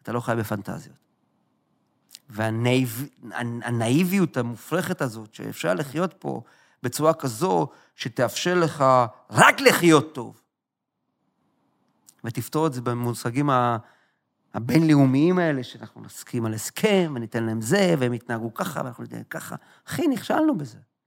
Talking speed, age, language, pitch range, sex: 115 wpm, 40-59, Hebrew, 120-180 Hz, male